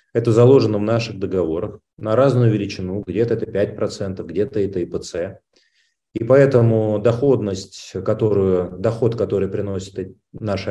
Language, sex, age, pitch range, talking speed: Russian, male, 30-49, 100-125 Hz, 125 wpm